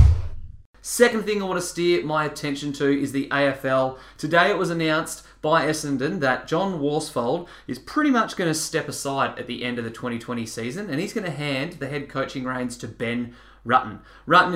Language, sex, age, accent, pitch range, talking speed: English, male, 20-39, Australian, 120-160 Hz, 200 wpm